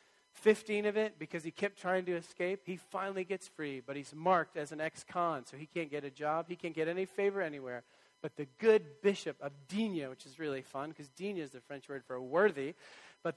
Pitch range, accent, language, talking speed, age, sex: 145-190 Hz, American, English, 225 wpm, 40-59, male